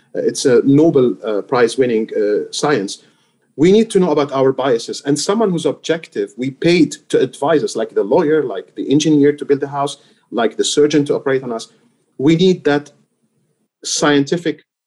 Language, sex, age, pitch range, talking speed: English, male, 40-59, 135-165 Hz, 180 wpm